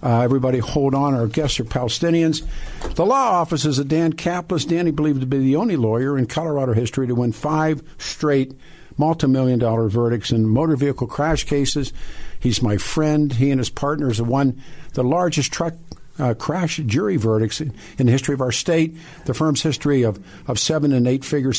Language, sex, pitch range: English, male, 120-155 Hz